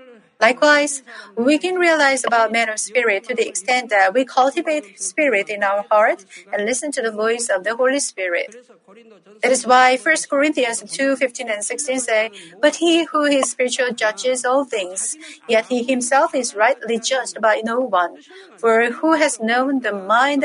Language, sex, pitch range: Korean, female, 225-295 Hz